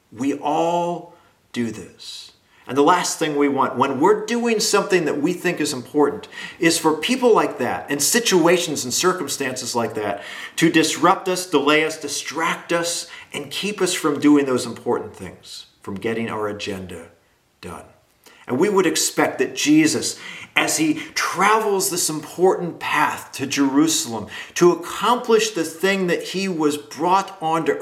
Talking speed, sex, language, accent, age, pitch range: 155 wpm, male, English, American, 50-69, 120-175 Hz